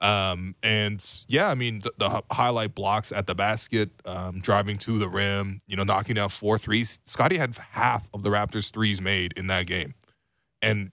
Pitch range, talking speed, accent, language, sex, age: 100-115 Hz, 190 wpm, American, English, male, 20-39